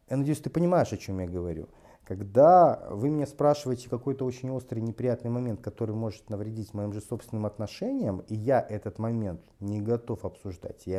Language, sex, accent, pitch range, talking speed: Russian, male, native, 105-130 Hz, 175 wpm